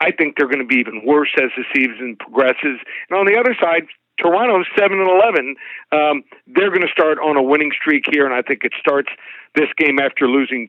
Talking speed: 220 wpm